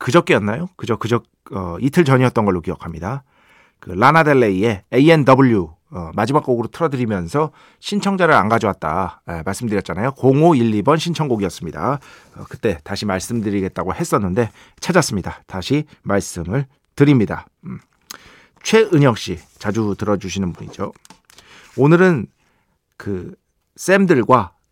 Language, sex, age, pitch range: Korean, male, 40-59, 105-175 Hz